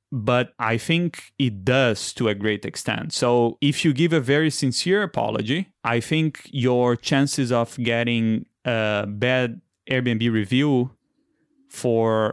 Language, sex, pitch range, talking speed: English, male, 115-145 Hz, 135 wpm